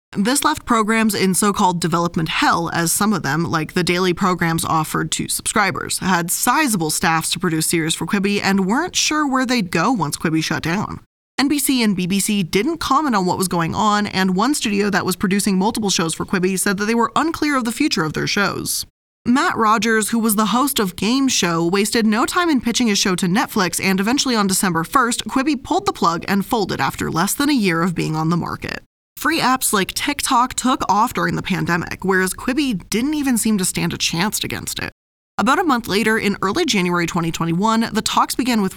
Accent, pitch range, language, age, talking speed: American, 180-250 Hz, English, 20-39, 215 wpm